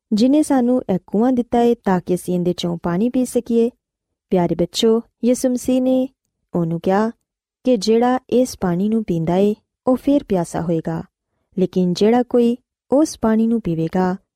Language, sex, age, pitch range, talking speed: Punjabi, female, 20-39, 180-255 Hz, 155 wpm